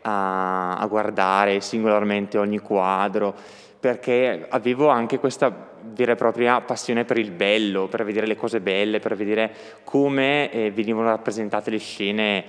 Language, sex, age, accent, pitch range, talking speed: Italian, male, 20-39, native, 100-120 Hz, 135 wpm